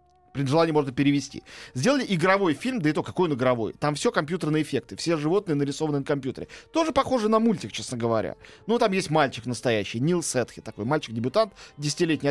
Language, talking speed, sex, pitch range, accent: Russian, 185 wpm, male, 140-205 Hz, native